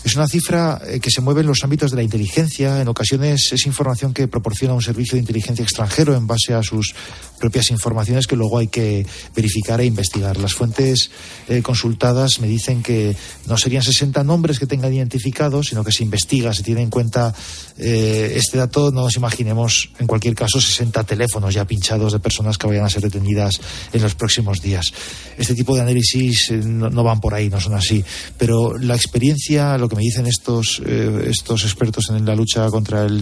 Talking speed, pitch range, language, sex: 200 wpm, 110-125 Hz, Spanish, male